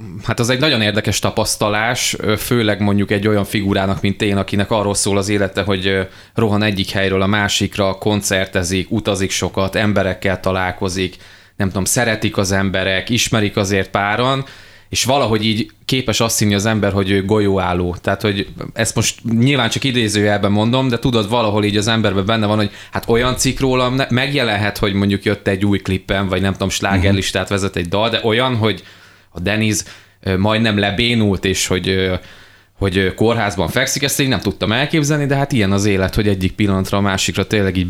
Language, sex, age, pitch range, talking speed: Hungarian, male, 20-39, 95-115 Hz, 175 wpm